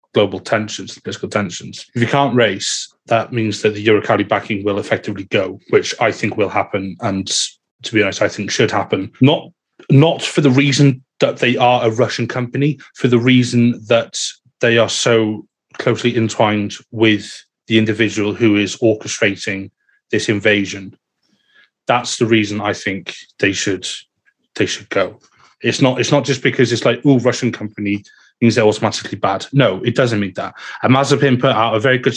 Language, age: English, 30-49